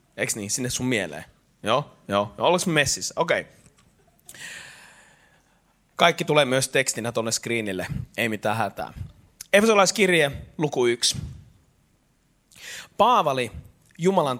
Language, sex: Finnish, male